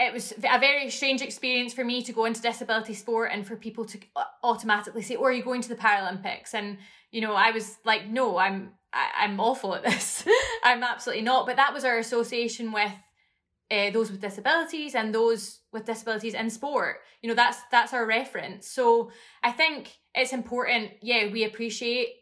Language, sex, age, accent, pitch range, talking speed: English, female, 20-39, British, 215-250 Hz, 195 wpm